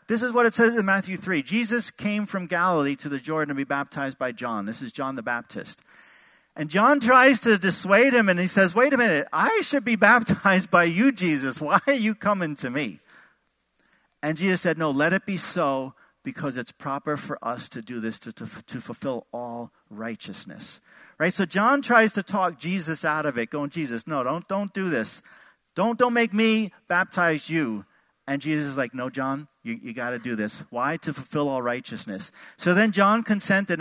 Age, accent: 50-69, American